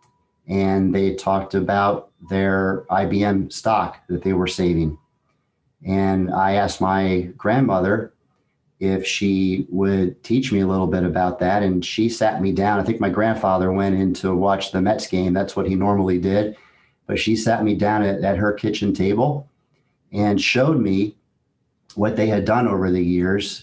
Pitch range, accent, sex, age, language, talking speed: 95-105 Hz, American, male, 40-59, English, 170 wpm